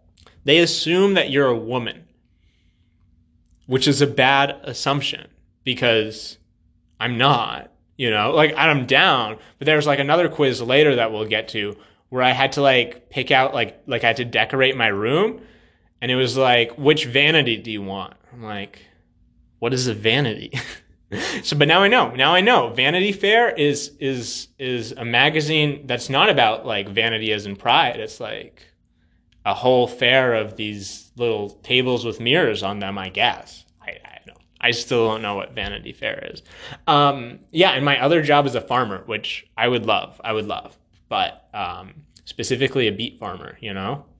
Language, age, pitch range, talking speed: English, 20-39, 105-145 Hz, 180 wpm